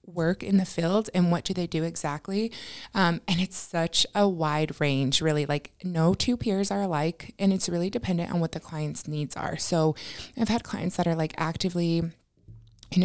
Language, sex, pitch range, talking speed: English, female, 155-180 Hz, 200 wpm